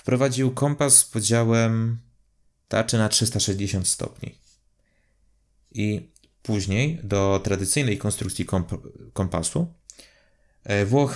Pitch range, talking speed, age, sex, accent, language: 100-125 Hz, 85 wpm, 30-49, male, native, Polish